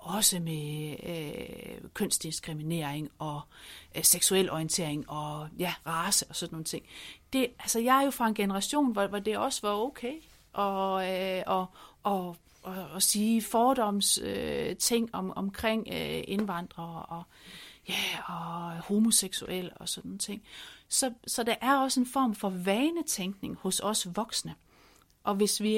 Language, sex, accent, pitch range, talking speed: Danish, female, native, 180-225 Hz, 150 wpm